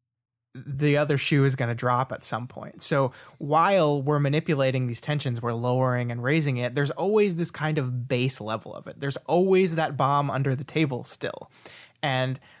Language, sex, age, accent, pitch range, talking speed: English, male, 20-39, American, 125-160 Hz, 185 wpm